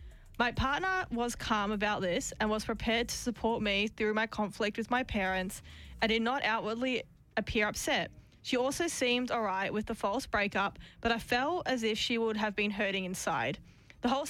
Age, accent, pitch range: 20-39, Australian, 210-240 Hz